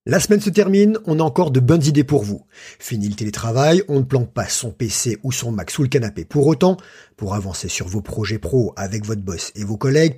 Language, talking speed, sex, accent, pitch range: French, 240 wpm, male, French, 115-165 Hz